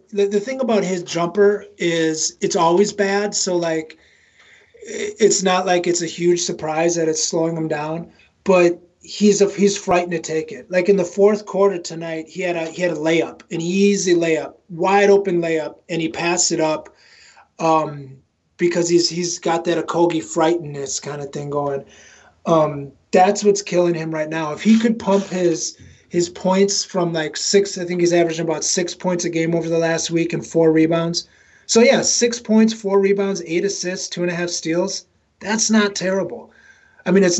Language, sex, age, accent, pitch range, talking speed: English, male, 30-49, American, 165-200 Hz, 190 wpm